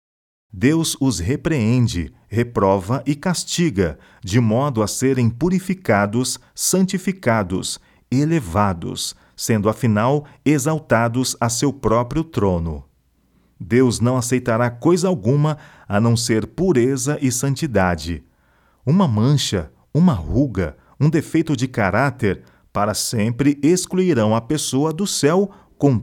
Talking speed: 110 wpm